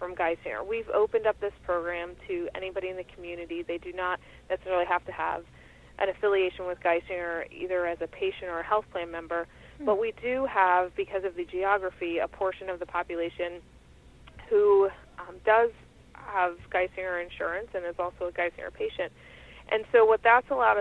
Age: 30-49